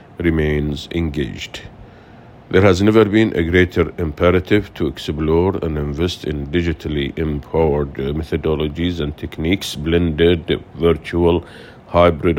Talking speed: 100 wpm